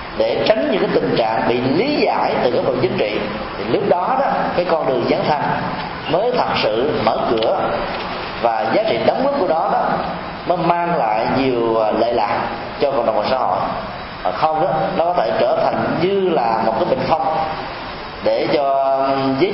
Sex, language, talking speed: male, Vietnamese, 195 wpm